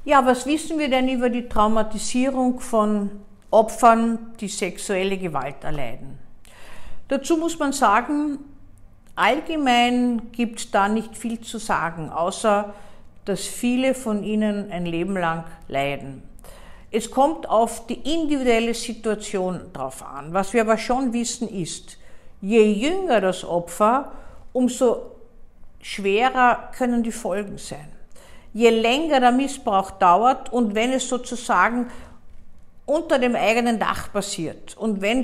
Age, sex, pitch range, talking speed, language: 50-69, female, 200-255 Hz, 130 wpm, German